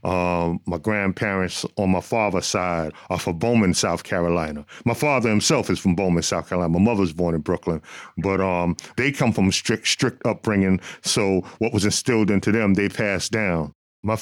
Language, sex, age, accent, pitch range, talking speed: English, male, 40-59, American, 90-110 Hz, 185 wpm